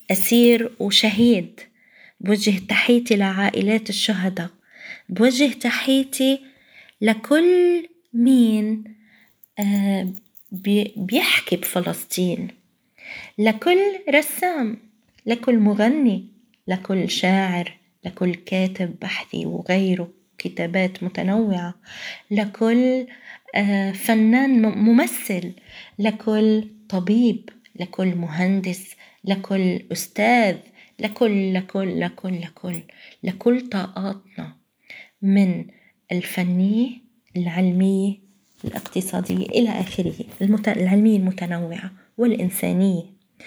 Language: Arabic